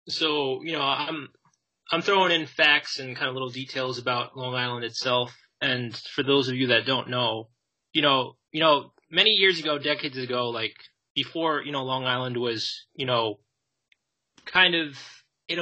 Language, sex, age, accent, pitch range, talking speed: English, male, 20-39, American, 130-165 Hz, 175 wpm